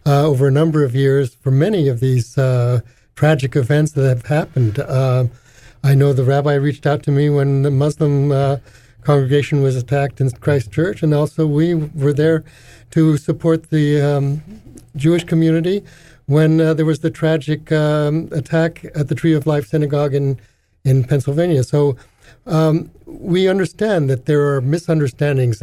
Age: 60-79